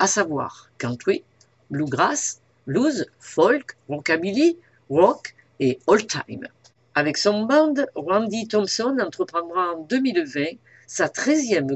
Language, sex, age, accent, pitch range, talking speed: French, female, 50-69, French, 155-245 Hz, 100 wpm